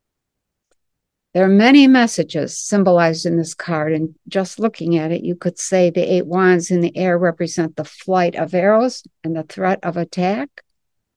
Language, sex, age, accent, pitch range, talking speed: English, female, 60-79, American, 175-215 Hz, 170 wpm